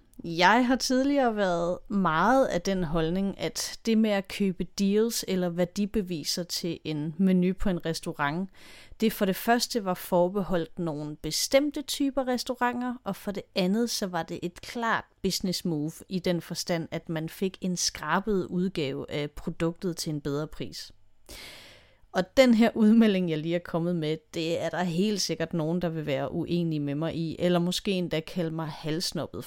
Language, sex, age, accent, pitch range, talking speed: Danish, female, 30-49, native, 165-210 Hz, 175 wpm